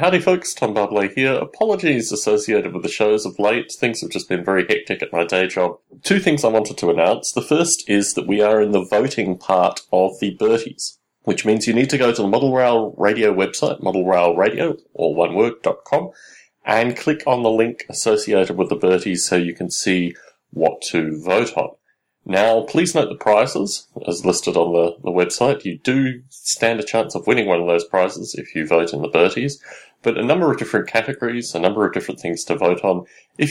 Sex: male